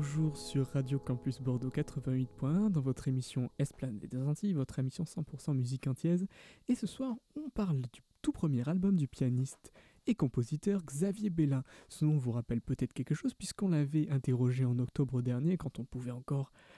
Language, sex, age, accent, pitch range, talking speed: French, male, 20-39, French, 130-165 Hz, 175 wpm